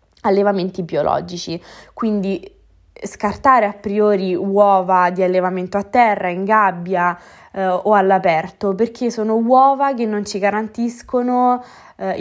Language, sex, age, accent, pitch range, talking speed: Italian, female, 20-39, native, 185-215 Hz, 120 wpm